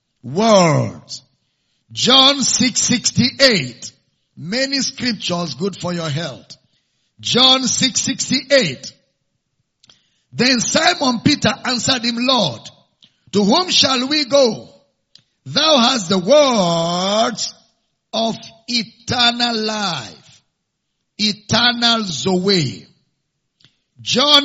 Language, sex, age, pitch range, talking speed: English, male, 50-69, 195-255 Hz, 80 wpm